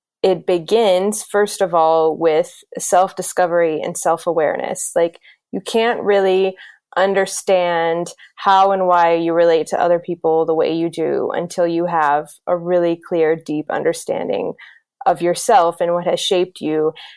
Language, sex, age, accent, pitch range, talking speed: English, female, 20-39, American, 170-190 Hz, 150 wpm